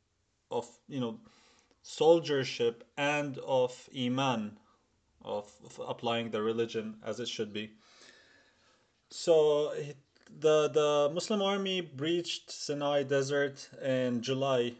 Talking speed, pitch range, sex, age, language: 105 wpm, 120-150 Hz, male, 30-49, English